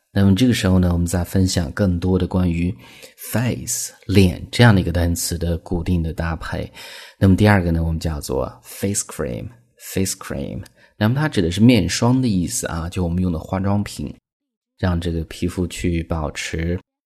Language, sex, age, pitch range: Chinese, male, 30-49, 85-105 Hz